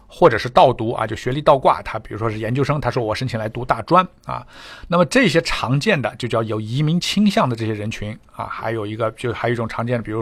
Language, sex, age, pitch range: Chinese, male, 60-79, 110-140 Hz